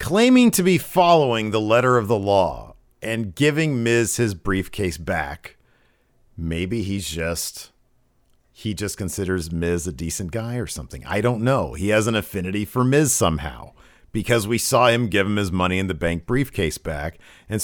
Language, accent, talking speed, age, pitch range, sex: English, American, 175 wpm, 50-69, 95-125 Hz, male